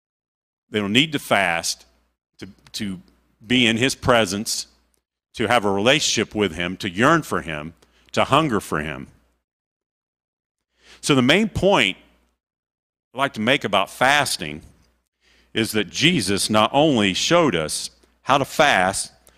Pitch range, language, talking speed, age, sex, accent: 70-120 Hz, English, 135 wpm, 50-69, male, American